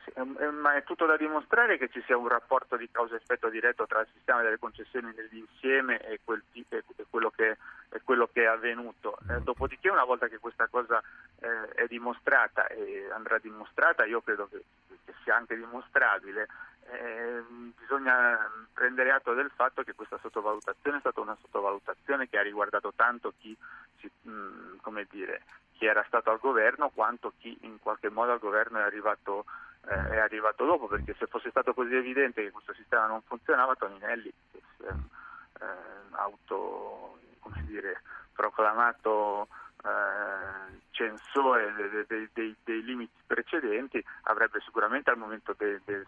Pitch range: 110-135 Hz